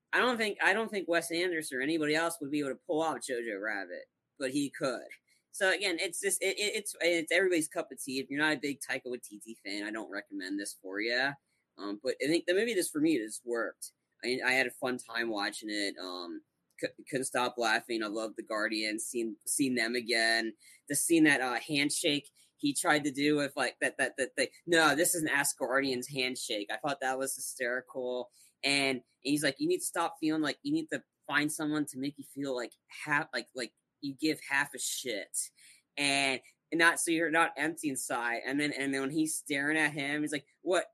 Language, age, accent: English, 20-39, American